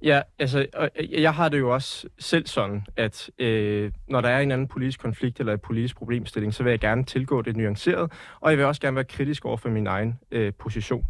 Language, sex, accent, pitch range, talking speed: Danish, male, native, 120-150 Hz, 215 wpm